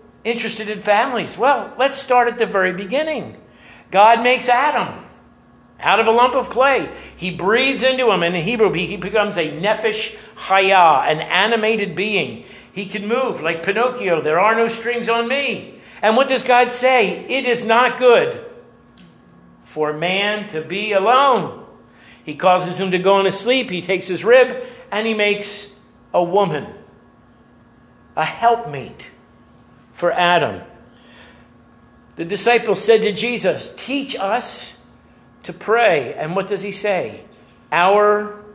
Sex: male